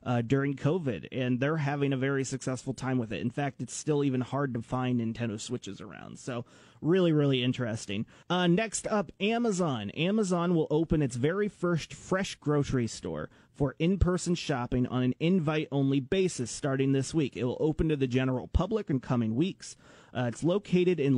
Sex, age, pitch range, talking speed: male, 30-49, 125-165 Hz, 185 wpm